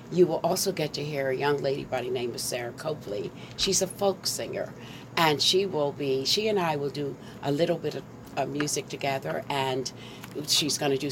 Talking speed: 215 wpm